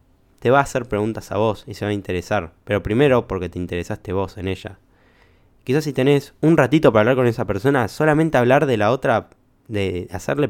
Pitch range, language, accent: 95-125 Hz, Spanish, Argentinian